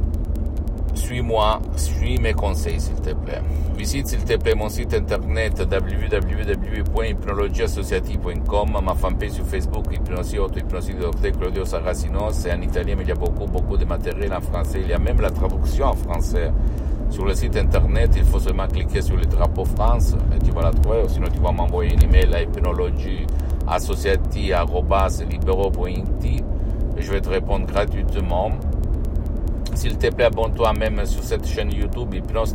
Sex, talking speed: male, 155 wpm